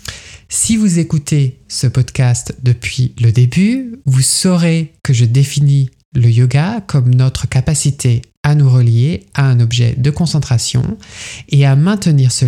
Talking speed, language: 145 wpm, French